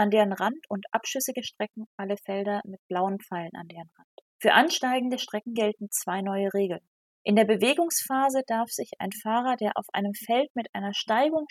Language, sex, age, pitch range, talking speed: German, female, 30-49, 205-245 Hz, 180 wpm